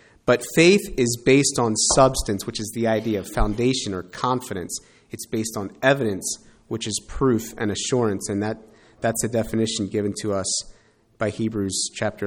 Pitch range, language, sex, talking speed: 110-145 Hz, English, male, 165 wpm